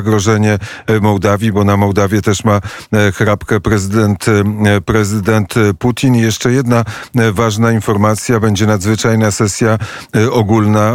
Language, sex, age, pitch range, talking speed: Polish, male, 40-59, 105-115 Hz, 110 wpm